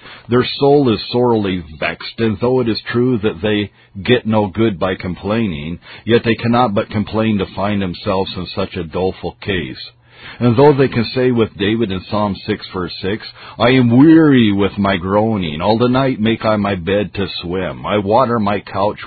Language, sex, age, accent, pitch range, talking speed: English, male, 50-69, American, 100-120 Hz, 190 wpm